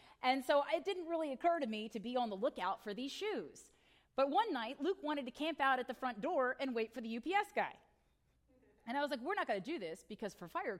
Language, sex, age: English, female, 30-49